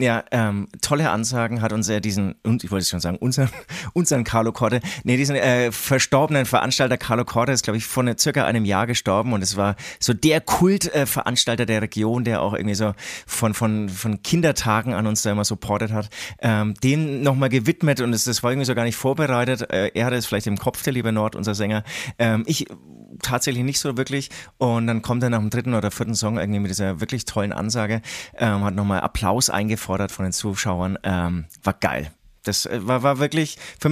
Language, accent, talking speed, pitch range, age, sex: German, German, 210 wpm, 110-145 Hz, 30-49, male